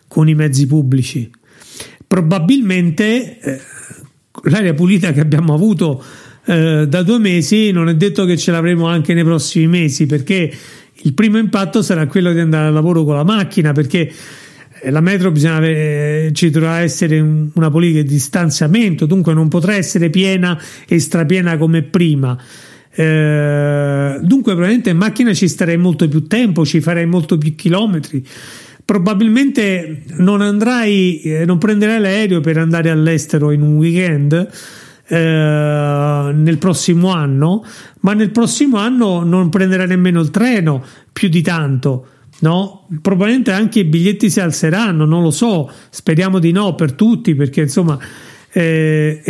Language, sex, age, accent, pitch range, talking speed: Italian, male, 40-59, native, 155-195 Hz, 145 wpm